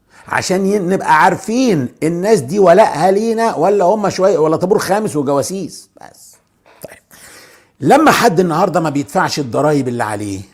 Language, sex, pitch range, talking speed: English, male, 145-210 Hz, 140 wpm